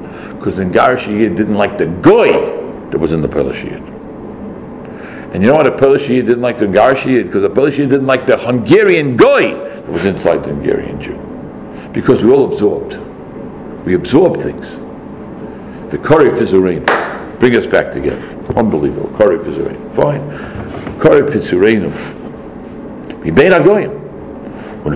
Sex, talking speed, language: male, 125 wpm, English